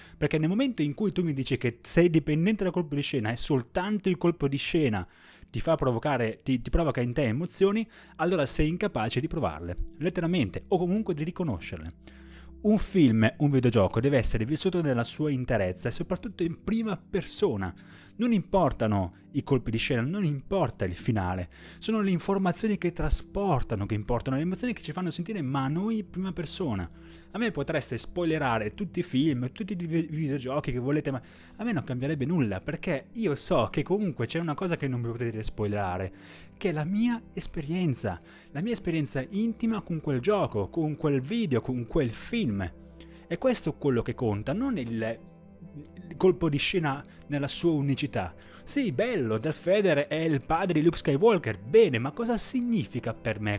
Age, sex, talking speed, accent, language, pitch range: 30-49, male, 180 wpm, native, Italian, 120-180 Hz